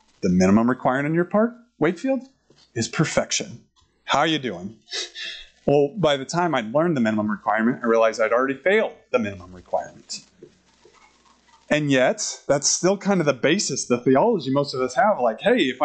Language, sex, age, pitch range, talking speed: English, male, 30-49, 150-215 Hz, 180 wpm